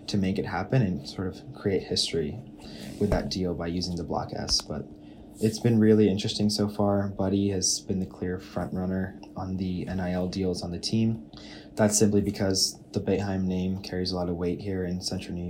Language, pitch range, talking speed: English, 90-105 Hz, 205 wpm